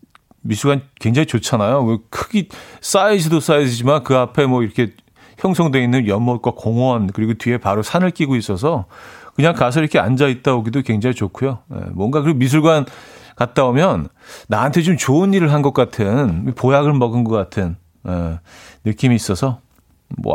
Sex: male